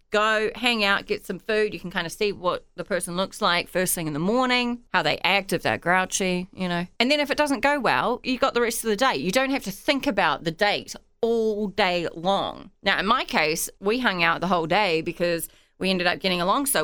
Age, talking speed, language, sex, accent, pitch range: 30-49, 255 wpm, English, female, Australian, 170-240 Hz